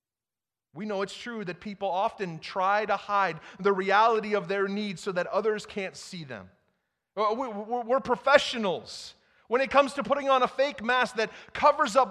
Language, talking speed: English, 175 wpm